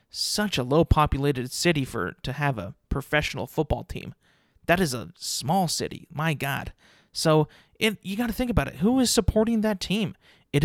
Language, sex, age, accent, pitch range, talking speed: English, male, 30-49, American, 140-180 Hz, 175 wpm